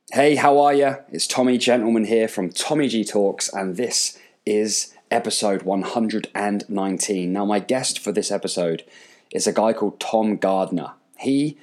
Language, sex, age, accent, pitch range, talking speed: English, male, 20-39, British, 95-125 Hz, 155 wpm